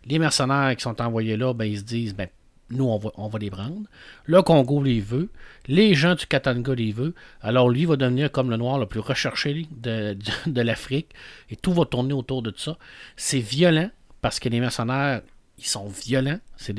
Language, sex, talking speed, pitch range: French, male, 215 wpm, 115-145 Hz